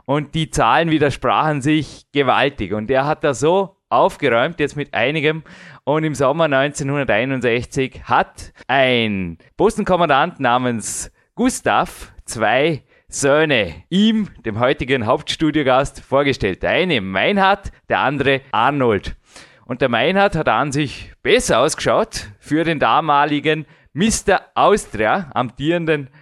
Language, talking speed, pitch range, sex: German, 115 wpm, 130-160 Hz, male